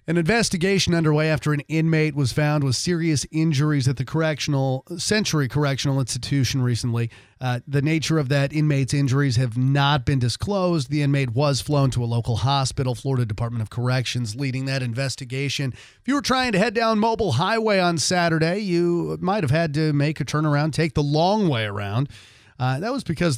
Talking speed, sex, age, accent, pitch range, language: 185 wpm, male, 40-59, American, 125-155 Hz, English